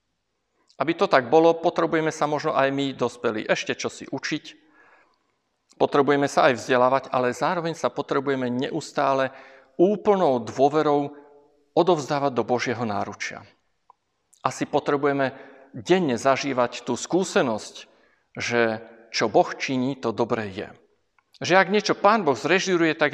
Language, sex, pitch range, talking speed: Slovak, male, 120-145 Hz, 125 wpm